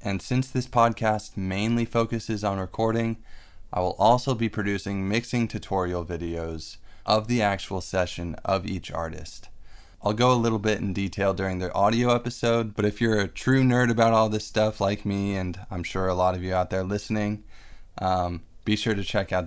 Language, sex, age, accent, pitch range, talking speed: English, male, 20-39, American, 90-110 Hz, 190 wpm